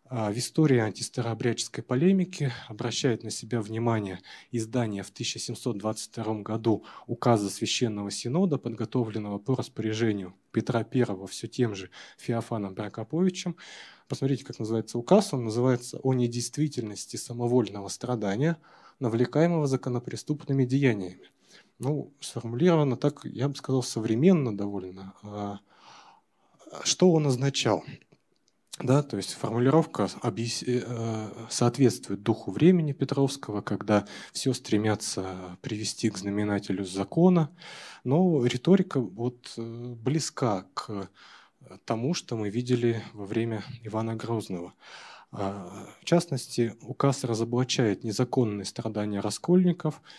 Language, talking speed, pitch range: Russian, 100 wpm, 110-135 Hz